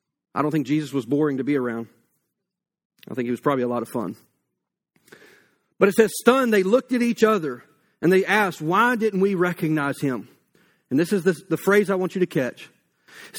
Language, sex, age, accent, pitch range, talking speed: English, male, 40-59, American, 155-205 Hz, 210 wpm